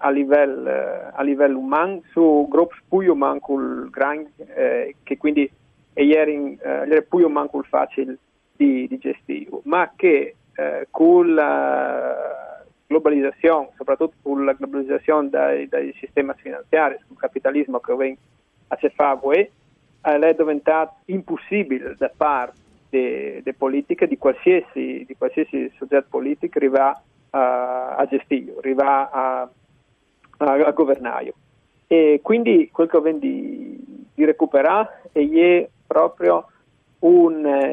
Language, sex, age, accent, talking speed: Italian, male, 40-59, native, 115 wpm